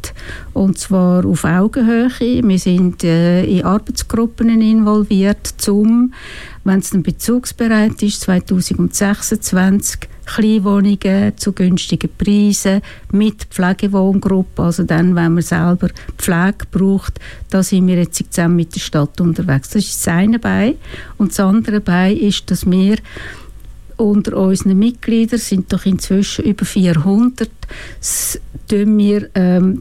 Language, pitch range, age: English, 185-215 Hz, 60-79